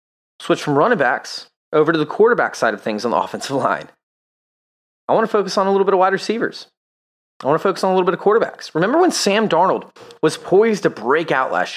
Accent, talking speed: American, 235 wpm